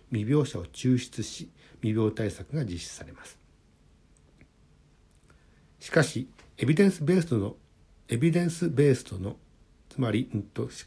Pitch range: 95-140 Hz